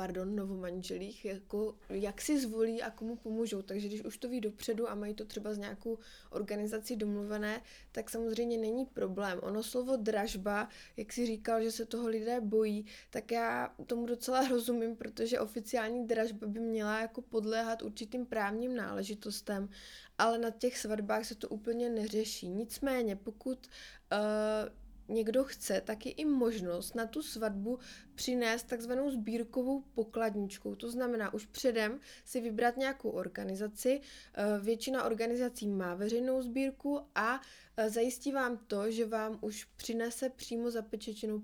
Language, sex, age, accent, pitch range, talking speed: Czech, female, 20-39, native, 210-245 Hz, 145 wpm